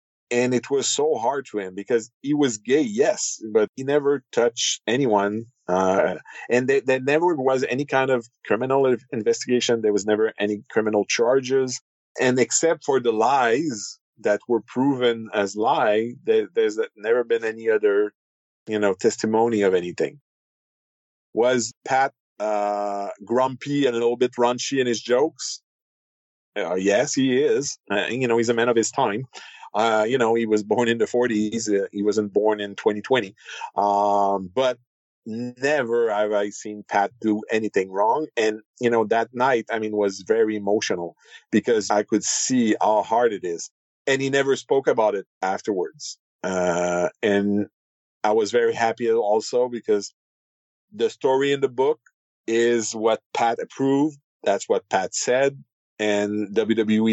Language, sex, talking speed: English, male, 160 wpm